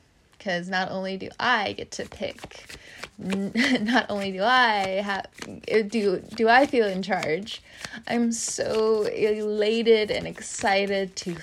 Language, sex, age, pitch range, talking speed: English, female, 20-39, 190-230 Hz, 130 wpm